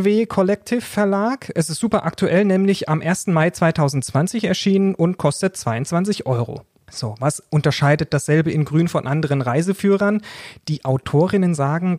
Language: German